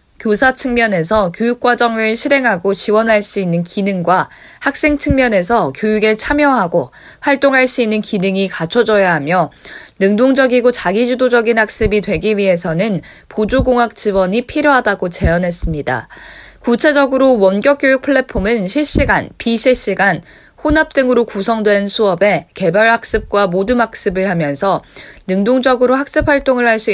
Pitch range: 190-250 Hz